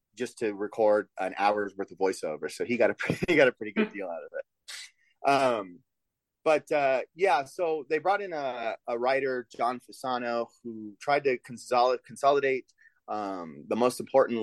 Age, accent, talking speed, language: 30-49, American, 180 wpm, English